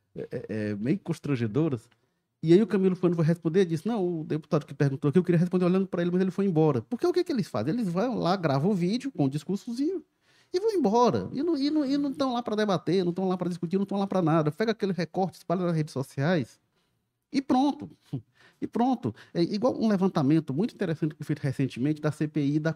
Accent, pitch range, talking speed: Brazilian, 140-215 Hz, 230 wpm